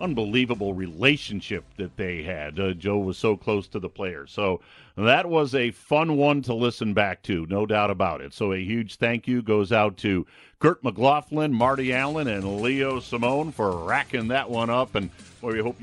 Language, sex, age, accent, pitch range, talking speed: English, male, 50-69, American, 105-140 Hz, 195 wpm